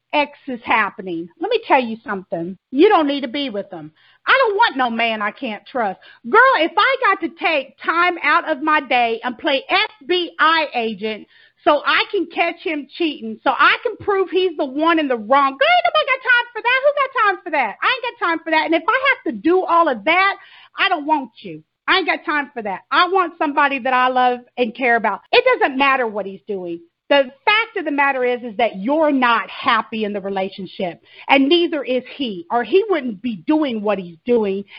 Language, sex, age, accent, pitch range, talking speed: English, female, 40-59, American, 230-340 Hz, 230 wpm